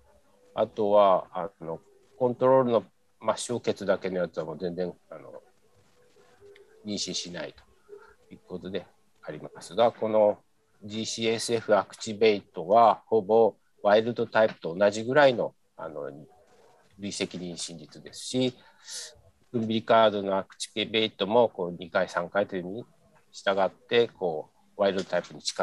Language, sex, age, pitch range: Japanese, male, 50-69, 100-130 Hz